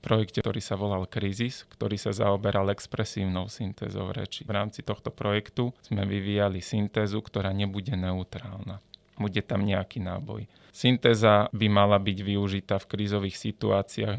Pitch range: 100-110 Hz